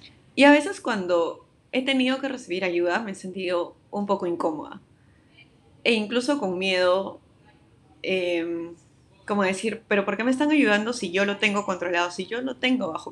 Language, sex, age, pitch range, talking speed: Spanish, female, 20-39, 175-225 Hz, 175 wpm